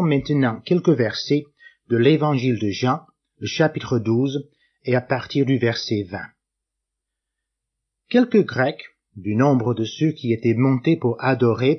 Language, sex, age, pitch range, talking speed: French, male, 50-69, 120-160 Hz, 135 wpm